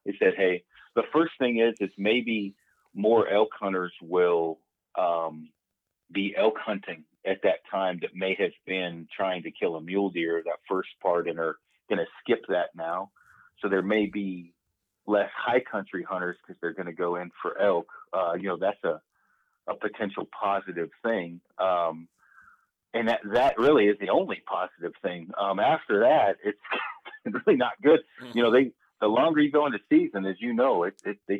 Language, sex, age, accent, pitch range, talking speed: English, male, 40-59, American, 90-110 Hz, 185 wpm